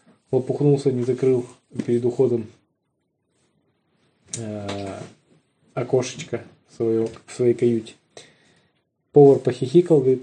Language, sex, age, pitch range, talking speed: Russian, male, 20-39, 120-155 Hz, 80 wpm